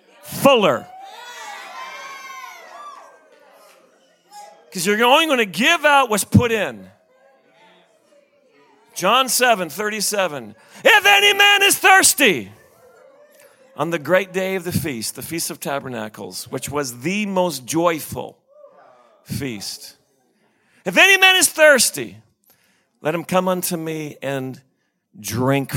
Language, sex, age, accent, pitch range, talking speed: English, male, 40-59, American, 170-240 Hz, 110 wpm